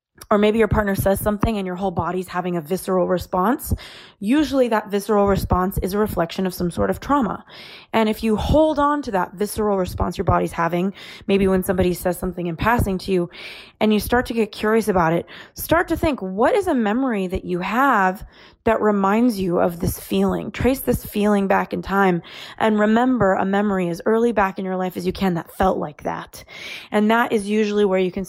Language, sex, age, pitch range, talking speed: English, female, 20-39, 180-215 Hz, 215 wpm